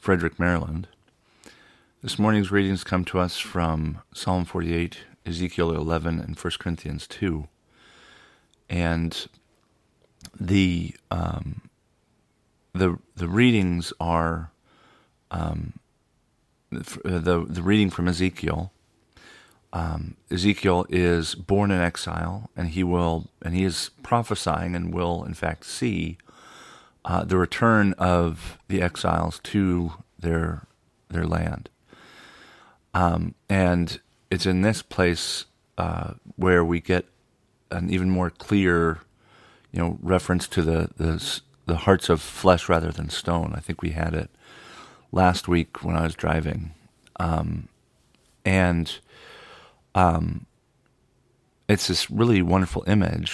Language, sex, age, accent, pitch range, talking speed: English, male, 40-59, American, 85-95 Hz, 120 wpm